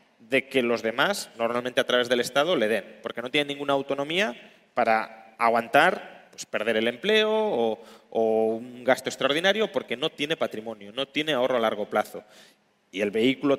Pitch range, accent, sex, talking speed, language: 120-160 Hz, Spanish, male, 170 wpm, Spanish